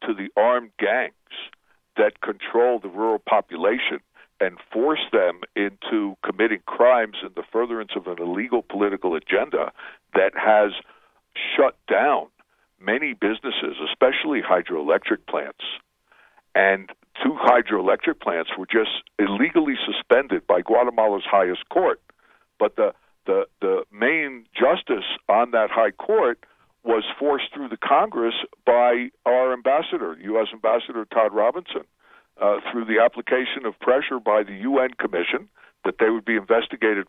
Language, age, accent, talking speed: English, 60-79, American, 130 wpm